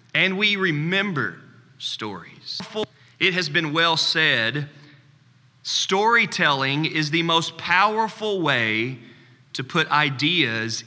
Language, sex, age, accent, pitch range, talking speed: English, male, 30-49, American, 135-190 Hz, 100 wpm